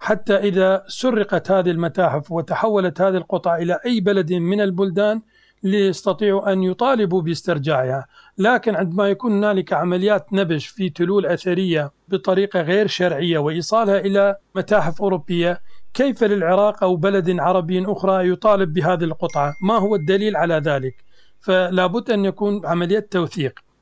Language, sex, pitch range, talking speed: Arabic, male, 175-205 Hz, 130 wpm